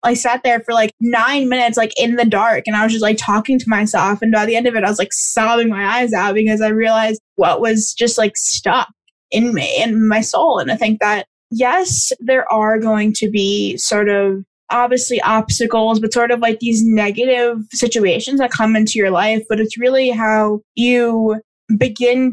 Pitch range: 220-255 Hz